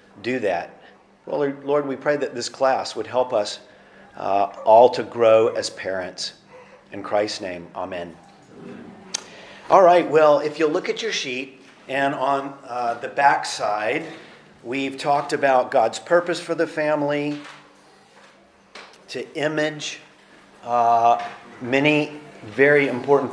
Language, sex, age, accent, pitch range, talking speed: English, male, 40-59, American, 120-150 Hz, 130 wpm